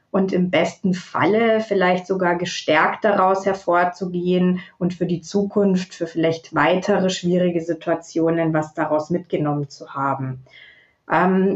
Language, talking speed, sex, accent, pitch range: German, 125 wpm, female, German, 170-205 Hz